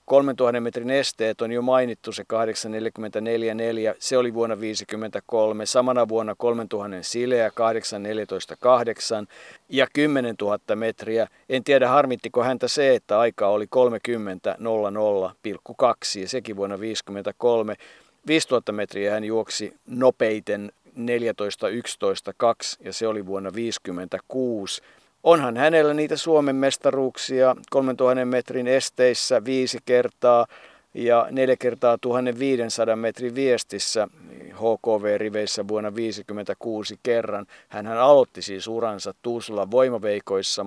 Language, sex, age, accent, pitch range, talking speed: Finnish, male, 50-69, native, 105-125 Hz, 105 wpm